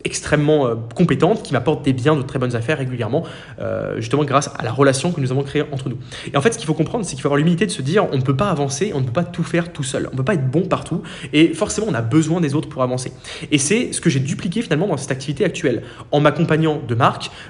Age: 20-39